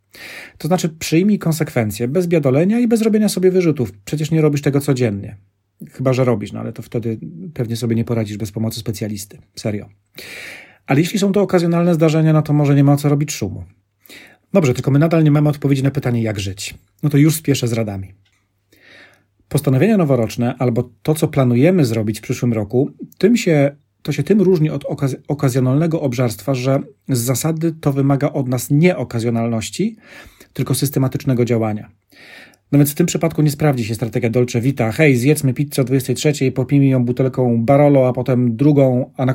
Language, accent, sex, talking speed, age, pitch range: Polish, native, male, 175 wpm, 40-59, 120-150 Hz